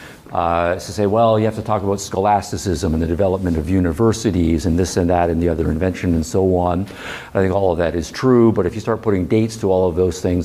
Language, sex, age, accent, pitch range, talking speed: English, male, 50-69, American, 85-100 Hz, 255 wpm